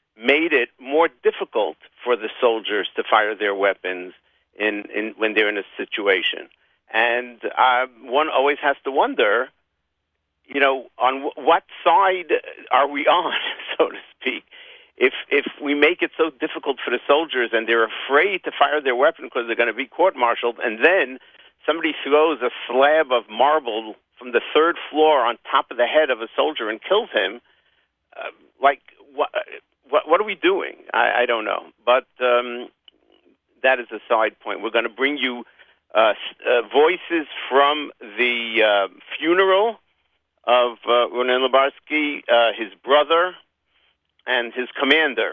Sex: male